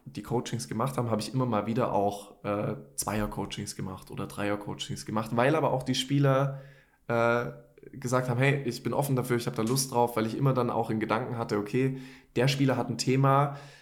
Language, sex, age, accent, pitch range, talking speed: German, male, 20-39, German, 105-130 Hz, 210 wpm